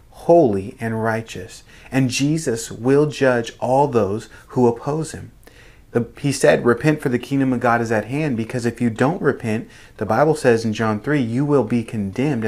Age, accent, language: 30-49, American, English